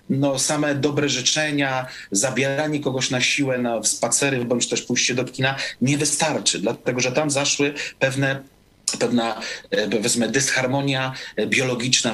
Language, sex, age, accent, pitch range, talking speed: Polish, male, 40-59, native, 115-140 Hz, 125 wpm